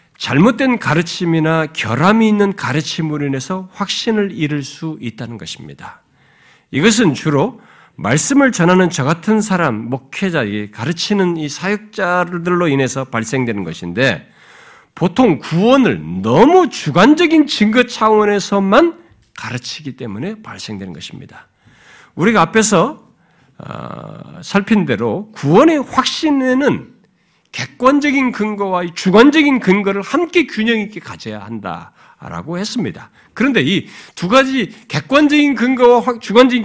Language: Korean